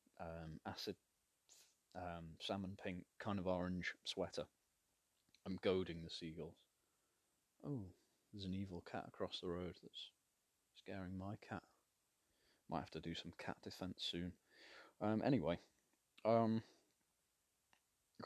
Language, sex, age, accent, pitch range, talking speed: English, male, 20-39, British, 85-100 Hz, 120 wpm